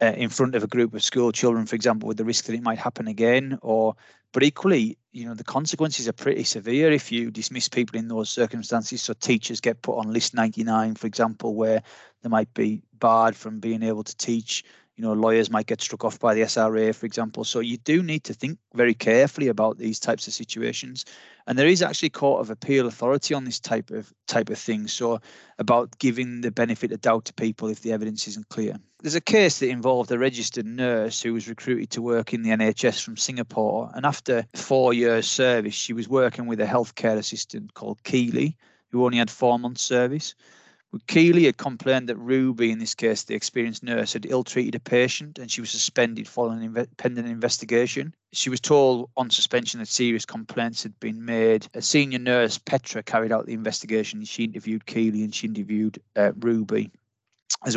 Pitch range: 110-130 Hz